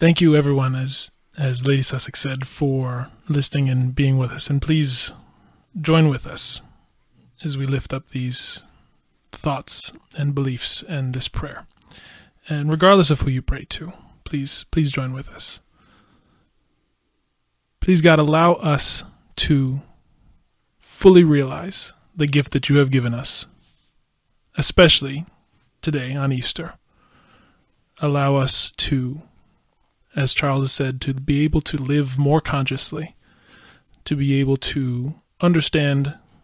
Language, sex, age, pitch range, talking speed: English, male, 20-39, 135-155 Hz, 130 wpm